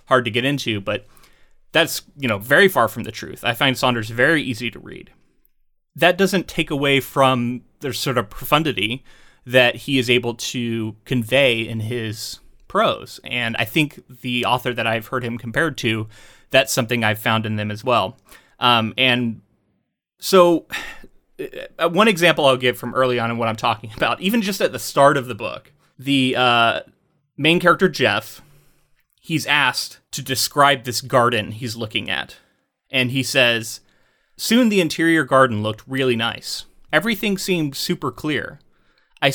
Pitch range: 120-165 Hz